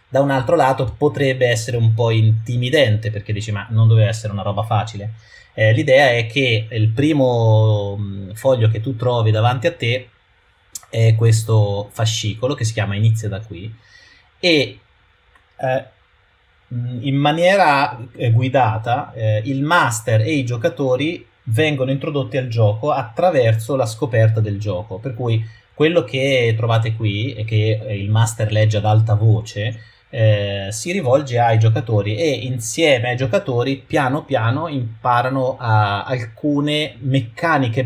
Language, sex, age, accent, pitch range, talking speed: Italian, male, 30-49, native, 110-130 Hz, 140 wpm